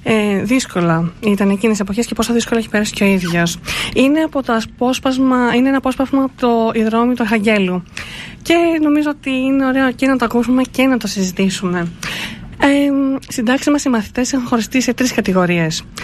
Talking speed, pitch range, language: 175 wpm, 200-260 Hz, Greek